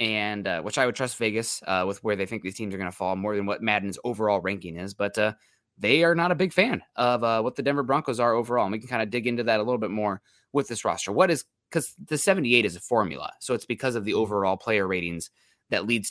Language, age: English, 20-39